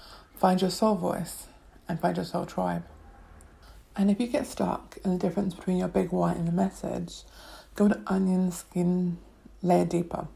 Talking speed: 175 wpm